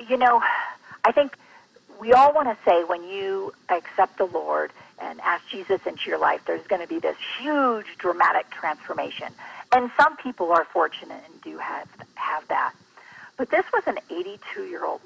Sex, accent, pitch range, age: female, American, 195-295 Hz, 50-69